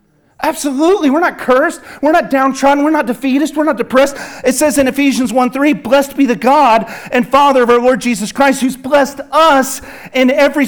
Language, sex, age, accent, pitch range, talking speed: English, male, 40-59, American, 230-280 Hz, 195 wpm